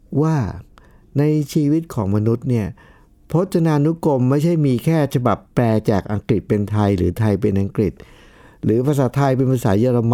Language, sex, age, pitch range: Thai, male, 60-79, 100-140 Hz